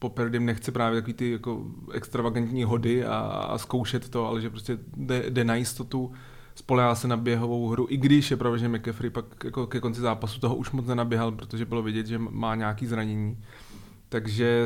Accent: native